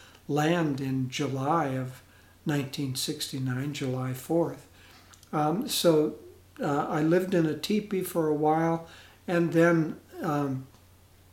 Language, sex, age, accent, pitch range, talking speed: English, male, 60-79, American, 130-165 Hz, 110 wpm